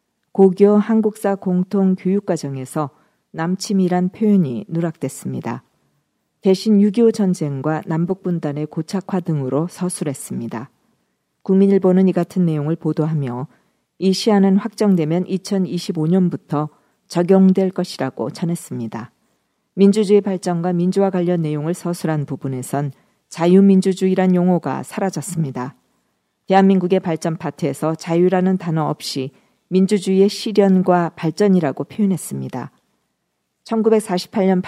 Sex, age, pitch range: female, 40-59, 160-195 Hz